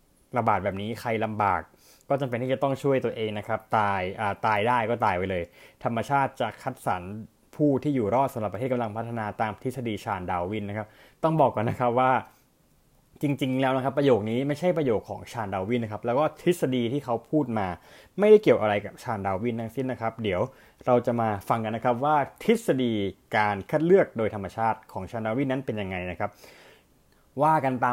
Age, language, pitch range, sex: 20-39, Thai, 105-135 Hz, male